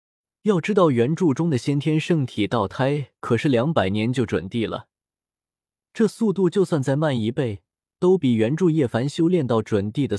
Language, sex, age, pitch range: Chinese, male, 20-39, 115-175 Hz